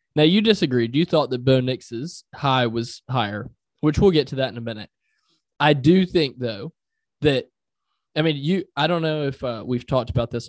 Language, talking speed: English, 205 wpm